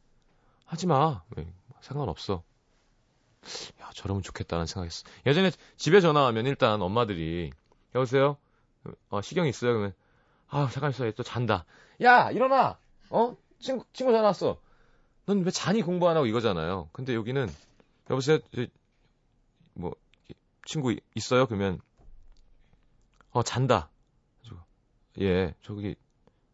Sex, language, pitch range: male, Korean, 100-145 Hz